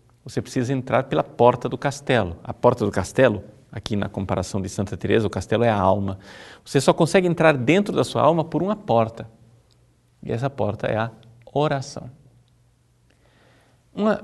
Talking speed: 170 wpm